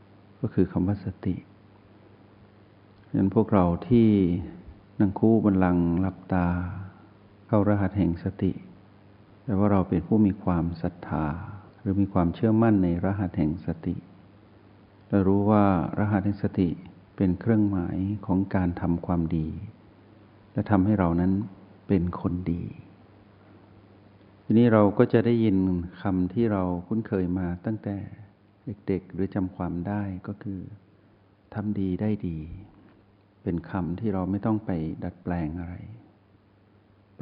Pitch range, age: 90-105 Hz, 60-79